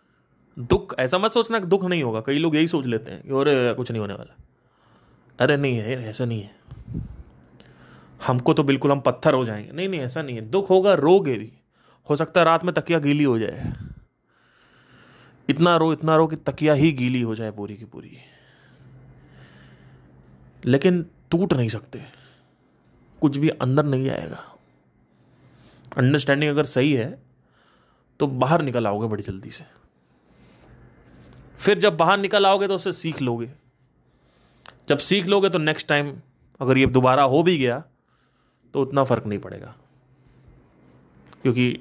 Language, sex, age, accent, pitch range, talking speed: Hindi, male, 30-49, native, 110-150 Hz, 160 wpm